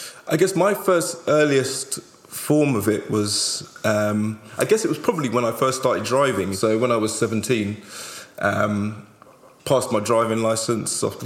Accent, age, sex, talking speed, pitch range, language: British, 20-39, male, 165 wpm, 105-120 Hz, English